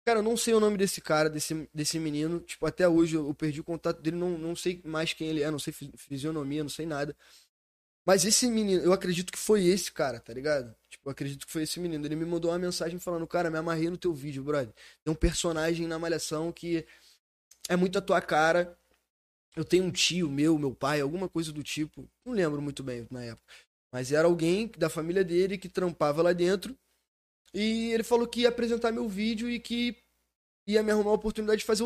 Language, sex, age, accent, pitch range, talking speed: Portuguese, male, 20-39, Brazilian, 155-190 Hz, 225 wpm